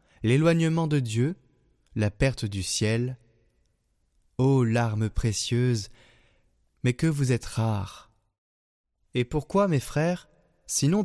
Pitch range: 105-135 Hz